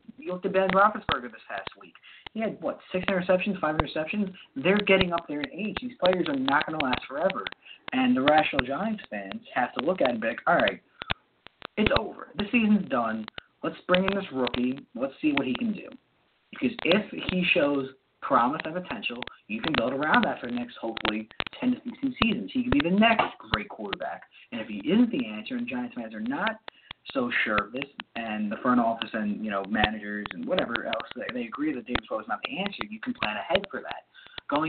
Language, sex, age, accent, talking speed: English, male, 30-49, American, 225 wpm